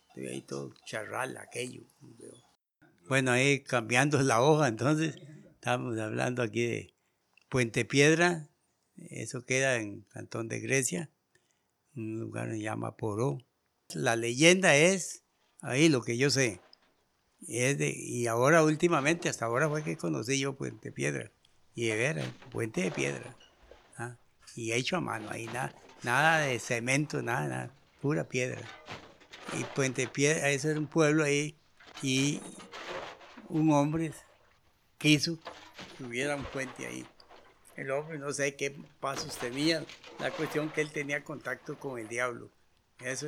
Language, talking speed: Spanish, 145 wpm